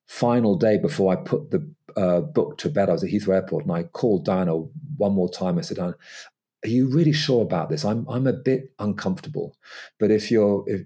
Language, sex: English, male